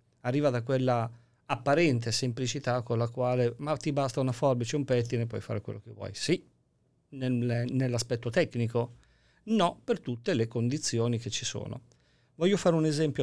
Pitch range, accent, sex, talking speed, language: 120-160 Hz, native, male, 170 wpm, Italian